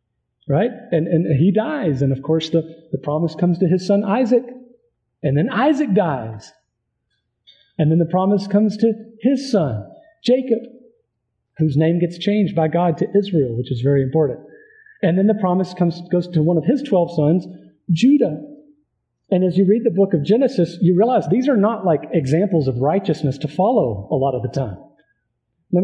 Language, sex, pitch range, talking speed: English, male, 155-210 Hz, 185 wpm